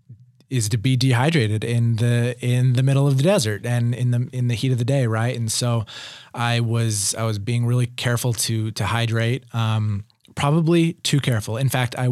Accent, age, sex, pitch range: American, 30-49, male, 115-135 Hz